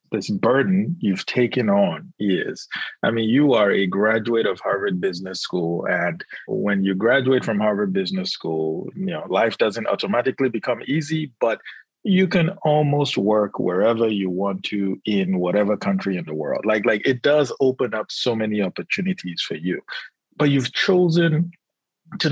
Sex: male